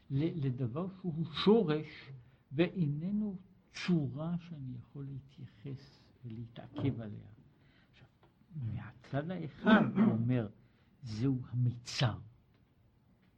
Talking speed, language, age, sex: 80 wpm, Hebrew, 60-79, male